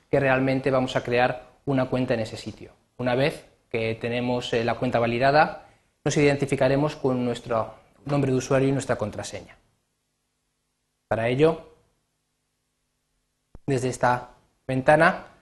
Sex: male